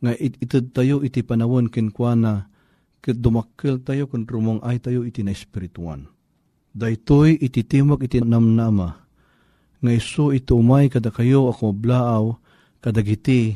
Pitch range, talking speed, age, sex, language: 115-140 Hz, 105 wpm, 40-59, male, Filipino